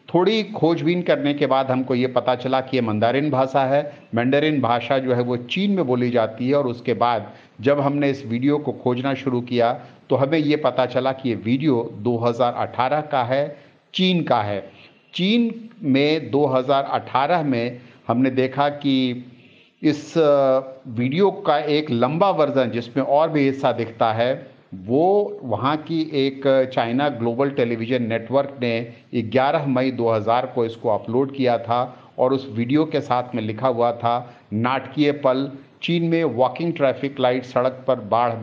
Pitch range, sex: 120-145 Hz, male